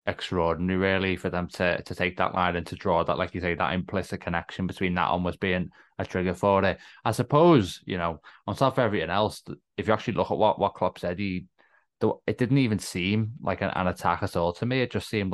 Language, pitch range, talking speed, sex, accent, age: English, 90-100 Hz, 245 wpm, male, British, 20-39